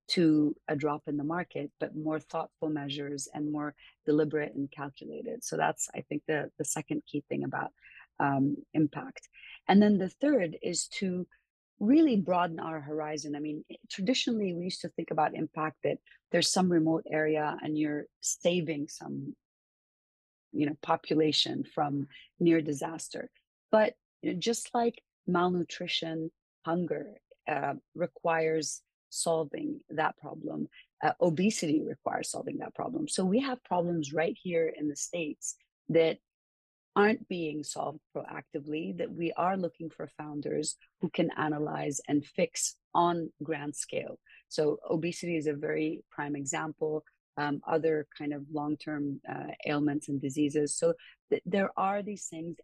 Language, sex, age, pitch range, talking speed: English, female, 30-49, 150-180 Hz, 140 wpm